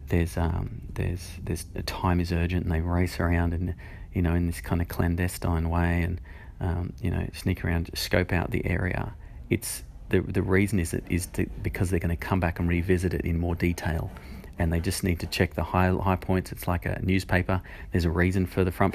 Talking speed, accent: 220 wpm, Australian